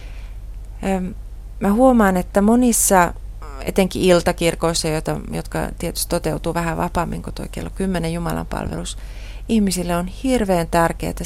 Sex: female